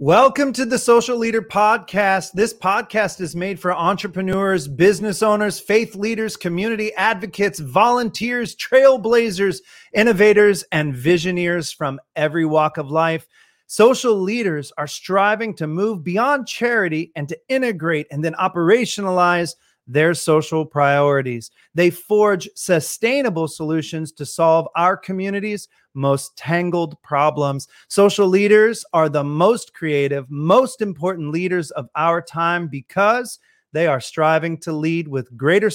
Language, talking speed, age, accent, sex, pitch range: English, 130 wpm, 30-49, American, male, 155-205 Hz